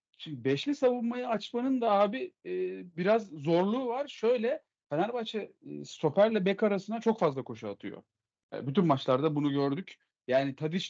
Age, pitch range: 40-59, 135-210 Hz